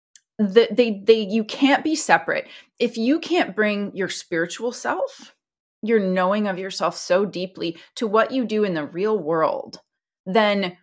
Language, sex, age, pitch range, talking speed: English, female, 30-49, 180-230 Hz, 160 wpm